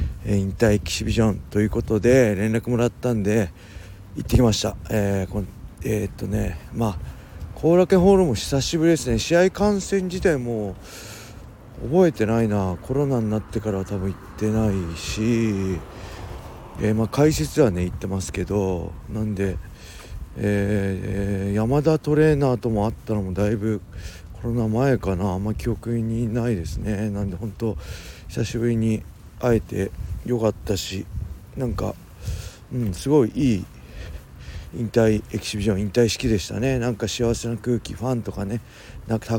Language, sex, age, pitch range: Japanese, male, 40-59, 95-115 Hz